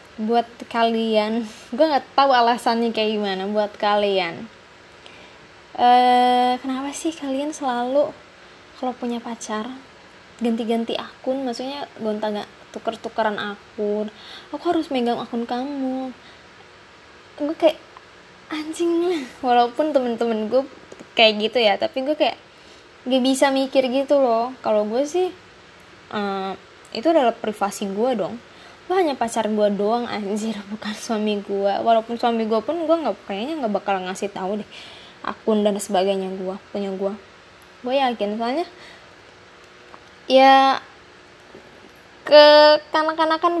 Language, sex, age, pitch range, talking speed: Indonesian, female, 20-39, 205-265 Hz, 120 wpm